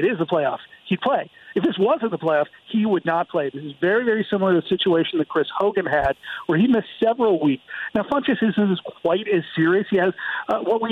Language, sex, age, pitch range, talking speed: English, male, 40-59, 165-205 Hz, 235 wpm